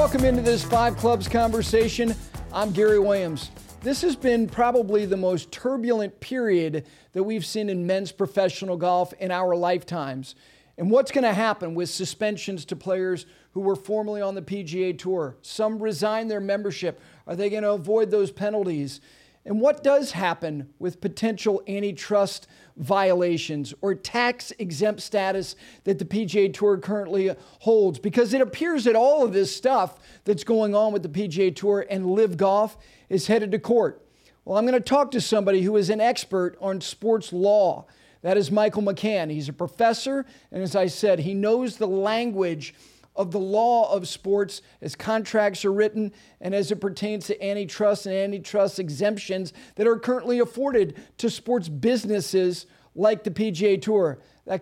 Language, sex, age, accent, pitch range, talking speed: English, male, 50-69, American, 185-220 Hz, 165 wpm